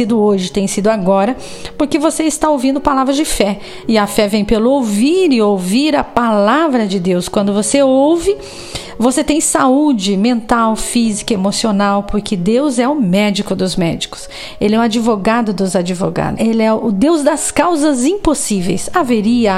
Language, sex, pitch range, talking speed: Portuguese, female, 210-305 Hz, 165 wpm